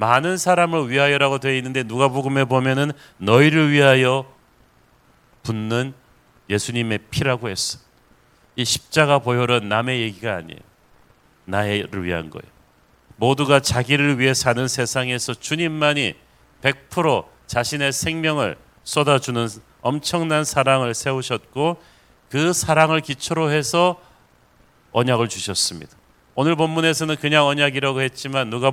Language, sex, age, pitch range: Korean, male, 40-59, 125-155 Hz